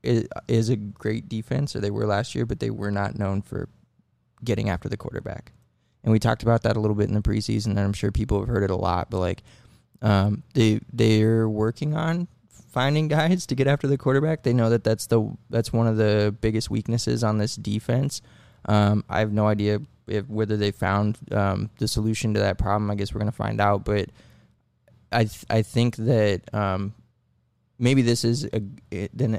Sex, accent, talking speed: male, American, 210 wpm